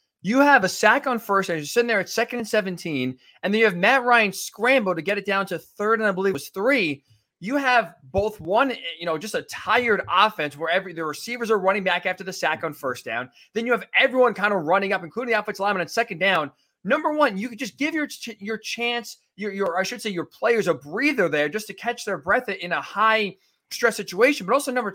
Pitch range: 165-230 Hz